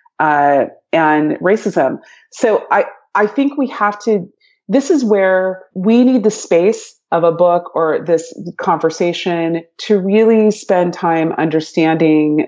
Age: 30-49